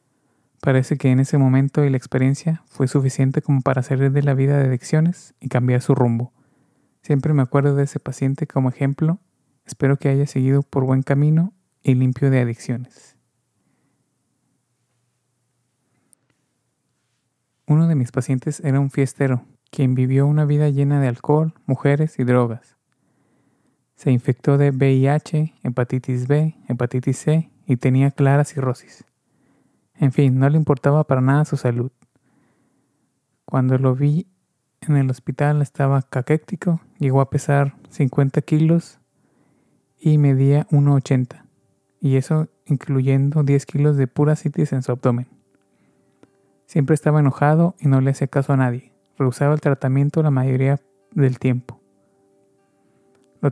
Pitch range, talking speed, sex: 130-145 Hz, 140 wpm, male